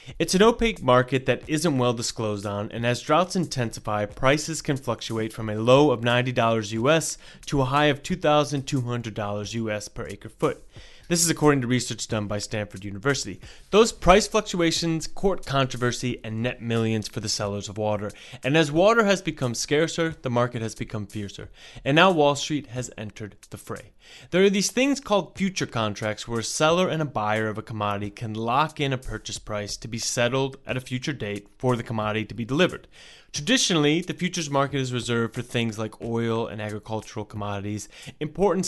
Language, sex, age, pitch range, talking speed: English, male, 30-49, 110-155 Hz, 190 wpm